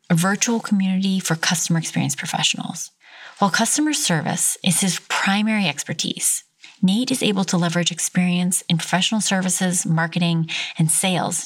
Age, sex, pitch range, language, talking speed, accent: 30-49, female, 170-205 Hz, English, 135 wpm, American